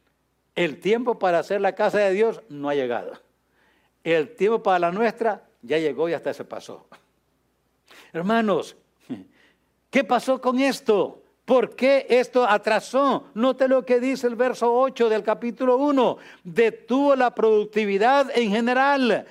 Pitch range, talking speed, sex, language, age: 220-265 Hz, 145 wpm, male, English, 60-79